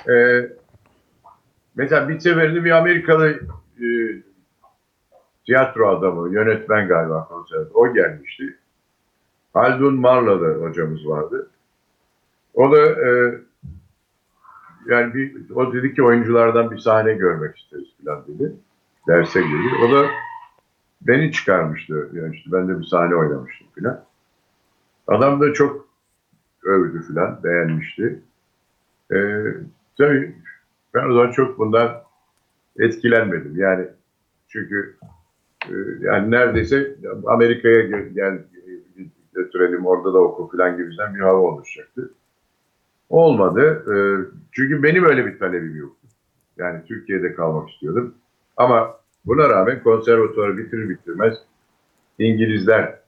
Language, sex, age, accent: Turkish, male, 60-79, native